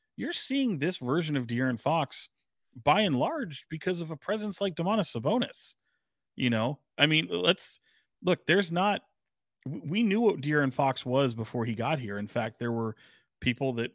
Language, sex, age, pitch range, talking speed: English, male, 30-49, 110-140 Hz, 175 wpm